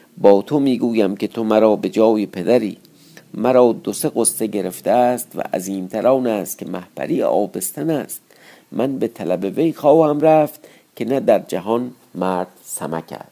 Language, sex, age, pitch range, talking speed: Persian, male, 50-69, 85-115 Hz, 155 wpm